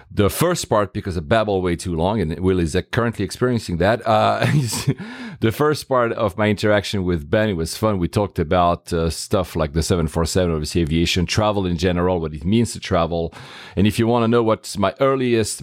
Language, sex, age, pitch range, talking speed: English, male, 40-59, 85-115 Hz, 205 wpm